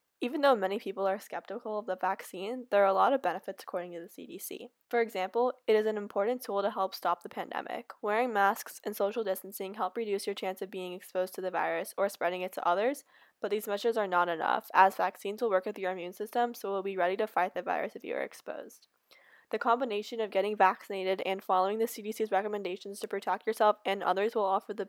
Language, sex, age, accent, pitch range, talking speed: English, female, 10-29, American, 190-220 Hz, 230 wpm